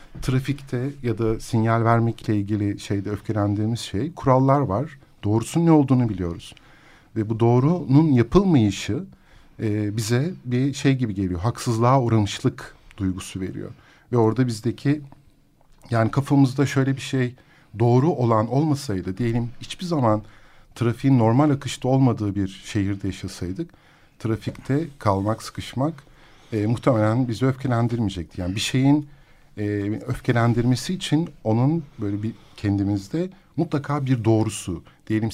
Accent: native